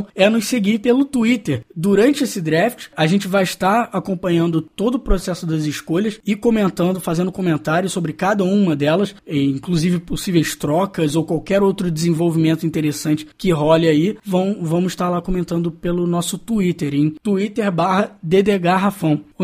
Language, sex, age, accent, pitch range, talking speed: Portuguese, male, 20-39, Brazilian, 150-190 Hz, 150 wpm